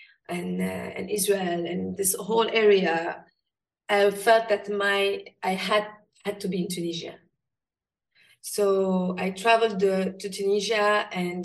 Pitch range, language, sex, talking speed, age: 185-210 Hz, English, female, 135 wpm, 20-39